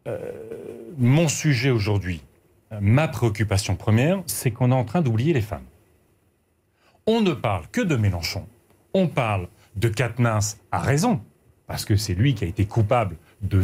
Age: 40-59